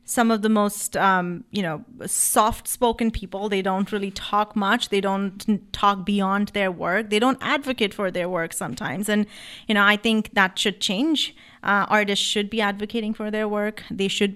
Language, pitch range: English, 195-220 Hz